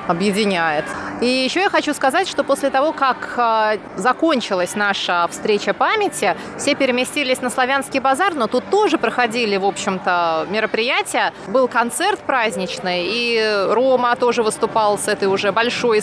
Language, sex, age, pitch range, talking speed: Russian, female, 20-39, 200-260 Hz, 140 wpm